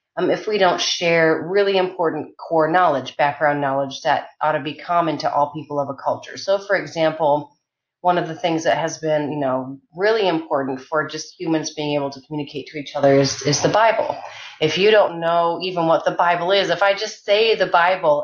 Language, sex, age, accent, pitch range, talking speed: English, female, 30-49, American, 150-185 Hz, 215 wpm